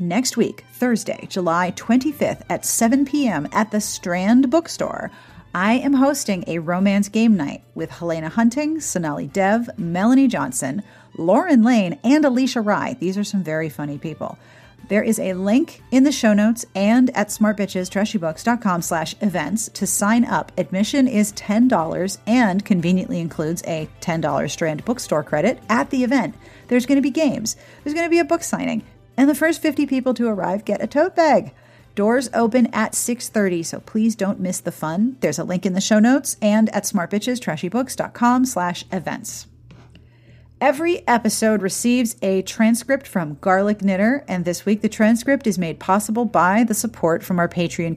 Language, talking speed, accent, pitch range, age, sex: English, 170 wpm, American, 180-240 Hz, 40-59, female